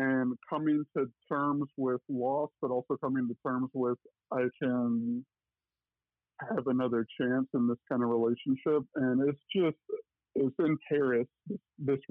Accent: American